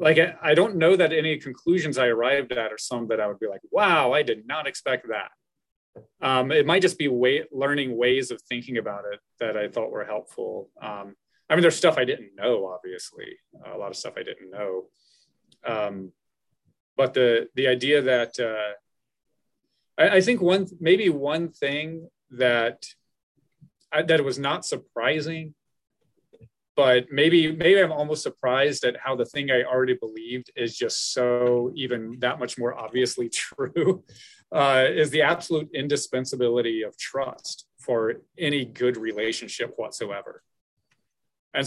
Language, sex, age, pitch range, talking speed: English, male, 30-49, 120-150 Hz, 160 wpm